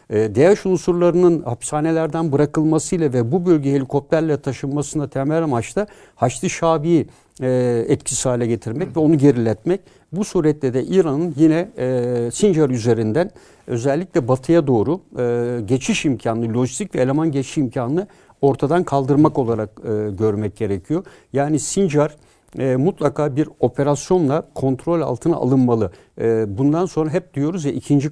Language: Turkish